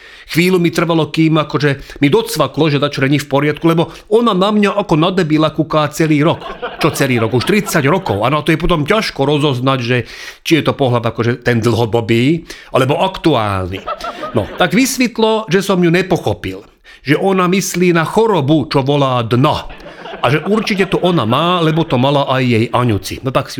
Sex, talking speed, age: male, 195 wpm, 40-59